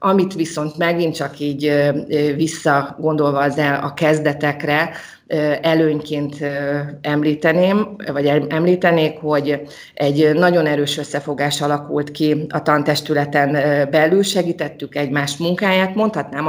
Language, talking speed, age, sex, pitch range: Hungarian, 100 wpm, 30-49, female, 145-165 Hz